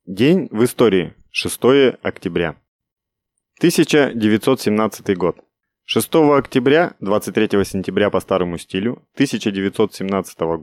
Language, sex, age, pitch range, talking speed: Russian, male, 30-49, 95-130 Hz, 85 wpm